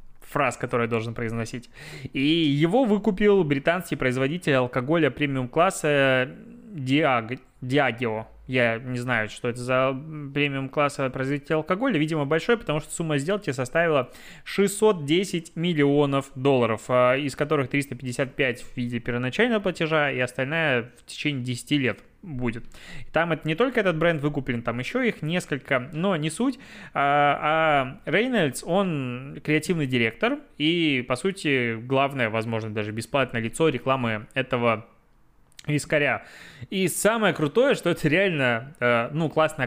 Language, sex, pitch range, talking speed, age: Russian, male, 125-160 Hz, 130 wpm, 20-39